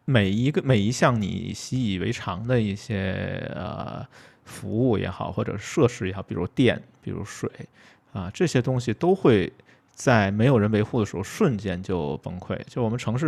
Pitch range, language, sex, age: 100-125 Hz, Chinese, male, 20-39